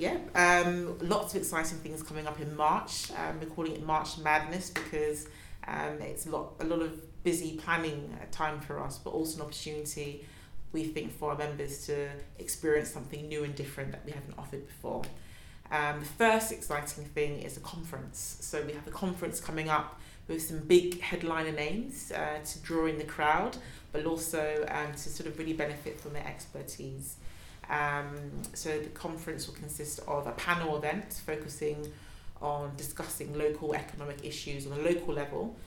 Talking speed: 180 wpm